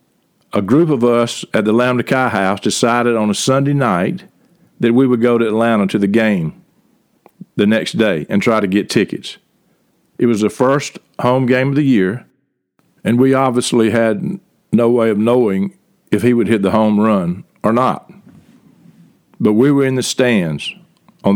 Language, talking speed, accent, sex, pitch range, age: English, 180 wpm, American, male, 110-135 Hz, 50-69